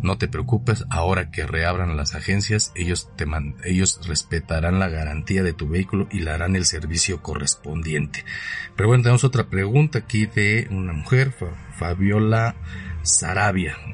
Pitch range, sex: 85-110 Hz, male